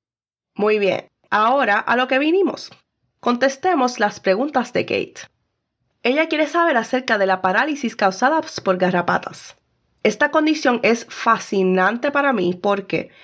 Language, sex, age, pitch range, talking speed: Spanish, female, 20-39, 185-255 Hz, 130 wpm